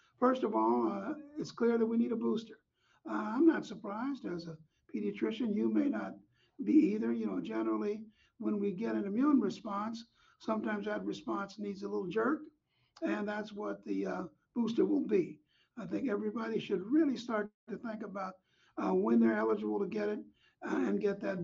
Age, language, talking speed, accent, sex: 60-79, English, 190 wpm, American, male